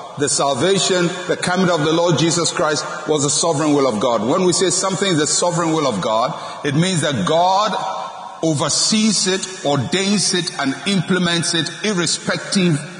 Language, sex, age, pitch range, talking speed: English, male, 50-69, 145-185 Hz, 170 wpm